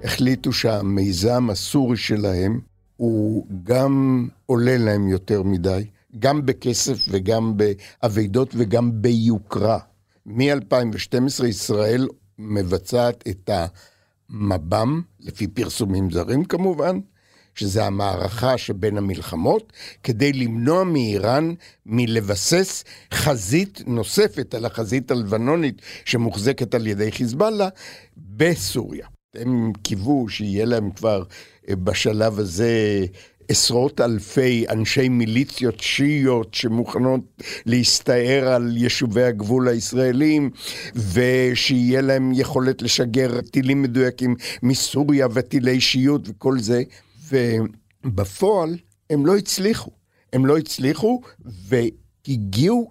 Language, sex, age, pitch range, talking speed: Hebrew, male, 60-79, 105-130 Hz, 90 wpm